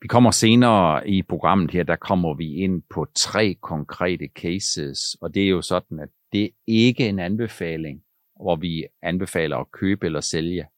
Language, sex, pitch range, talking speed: Danish, male, 90-125 Hz, 175 wpm